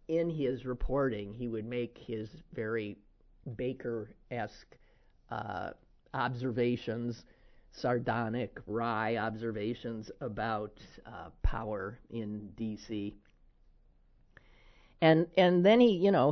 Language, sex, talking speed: English, male, 95 wpm